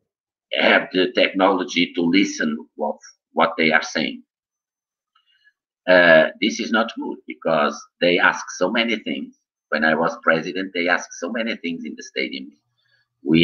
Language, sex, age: English, male, 50-69